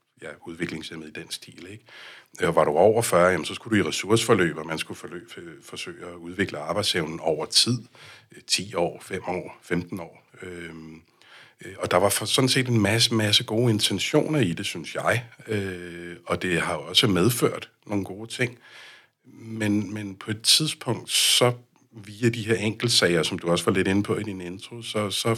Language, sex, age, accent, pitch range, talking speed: Danish, male, 60-79, native, 90-120 Hz, 190 wpm